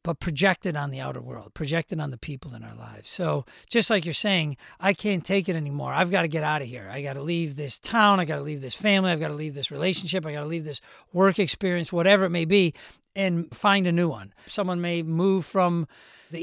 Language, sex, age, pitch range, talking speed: English, male, 40-59, 155-200 Hz, 250 wpm